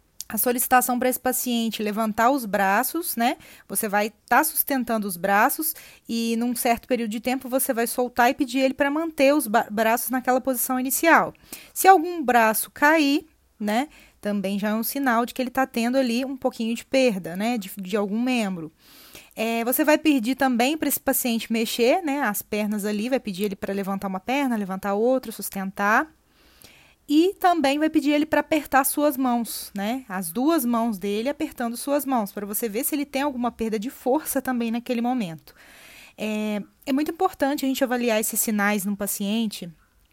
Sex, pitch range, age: female, 210-265 Hz, 20-39